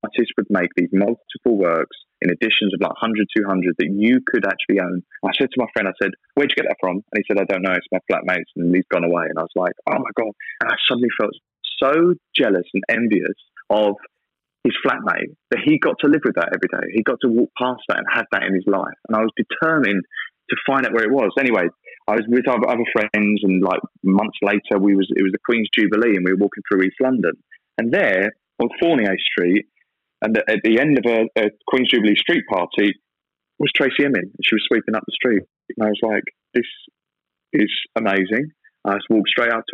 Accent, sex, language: British, male, English